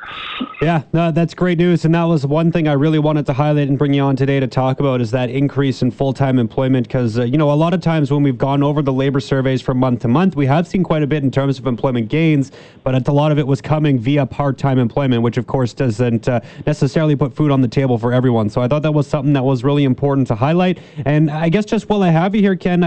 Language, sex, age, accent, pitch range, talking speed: English, male, 30-49, American, 135-160 Hz, 270 wpm